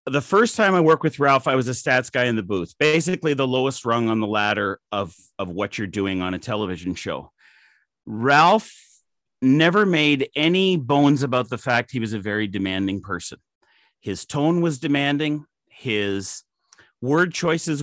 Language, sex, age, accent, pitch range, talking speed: English, male, 40-59, American, 120-165 Hz, 175 wpm